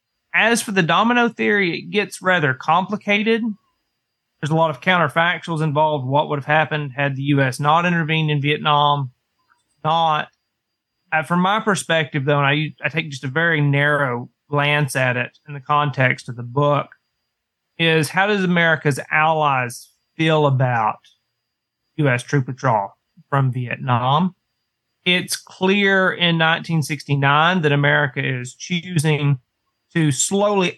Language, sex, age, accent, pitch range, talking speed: English, male, 30-49, American, 130-170 Hz, 135 wpm